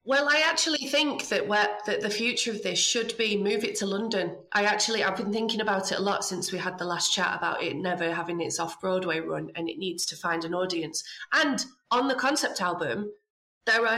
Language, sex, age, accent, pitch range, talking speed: English, female, 30-49, British, 180-225 Hz, 225 wpm